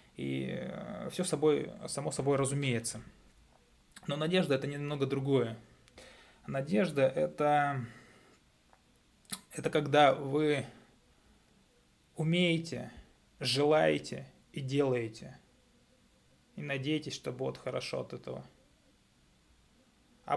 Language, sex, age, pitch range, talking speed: Russian, male, 20-39, 125-150 Hz, 90 wpm